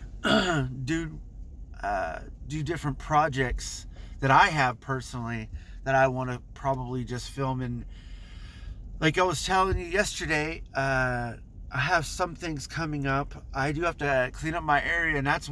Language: English